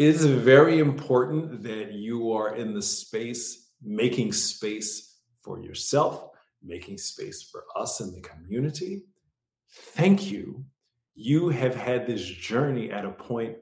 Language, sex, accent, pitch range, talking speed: English, male, American, 115-165 Hz, 135 wpm